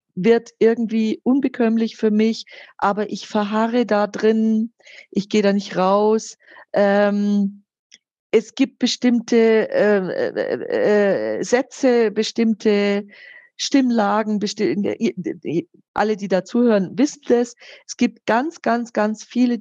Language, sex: German, female